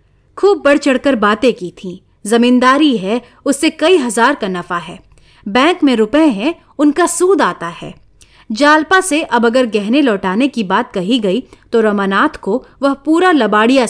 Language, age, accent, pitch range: Hindi, 30-49, native, 200-305 Hz